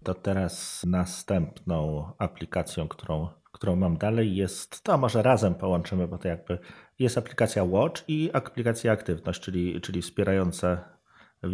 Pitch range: 90-115 Hz